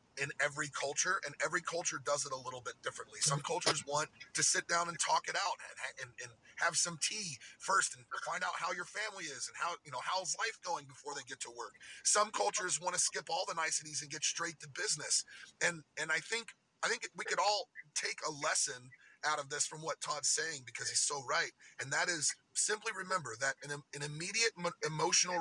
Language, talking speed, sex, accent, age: English, 220 wpm, male, American, 30-49